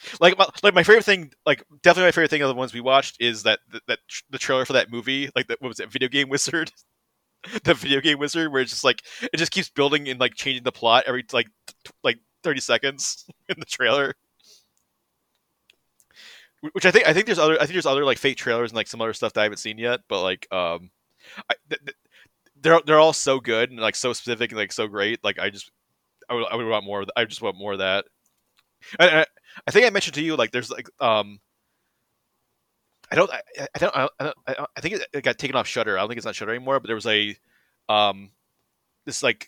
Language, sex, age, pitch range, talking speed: English, male, 30-49, 115-145 Hz, 240 wpm